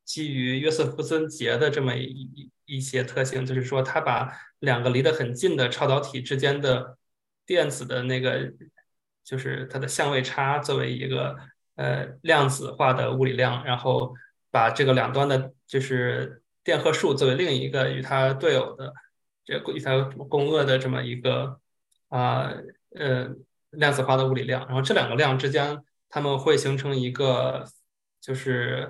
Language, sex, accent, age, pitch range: English, male, Chinese, 20-39, 130-140 Hz